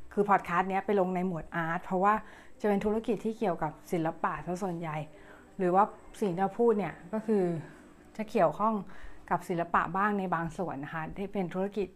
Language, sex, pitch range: Thai, female, 170-205 Hz